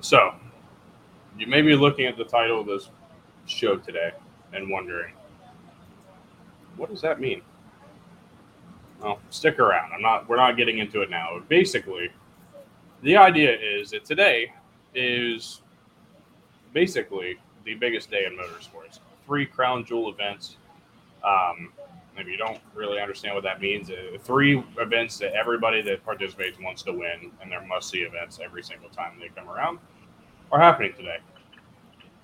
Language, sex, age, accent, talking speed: English, male, 20-39, American, 145 wpm